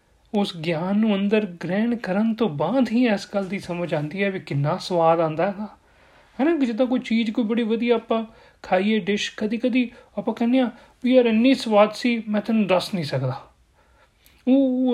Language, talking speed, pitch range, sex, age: Punjabi, 180 wpm, 165-220 Hz, male, 30-49